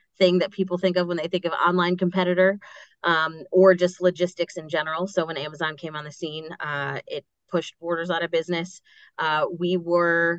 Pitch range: 165-190 Hz